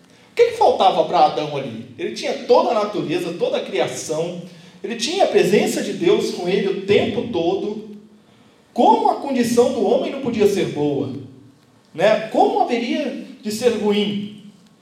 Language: Portuguese